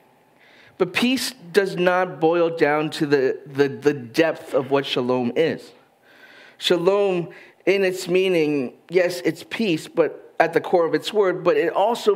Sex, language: male, English